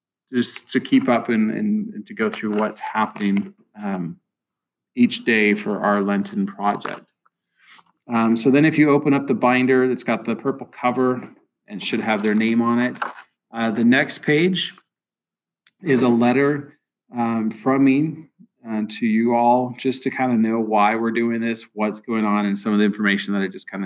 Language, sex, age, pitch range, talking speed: English, male, 30-49, 110-145 Hz, 185 wpm